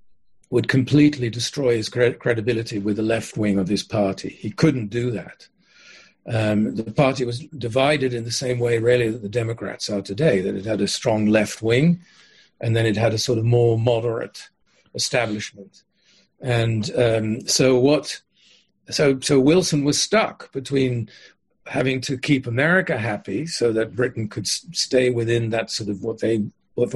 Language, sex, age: English, male, 50-69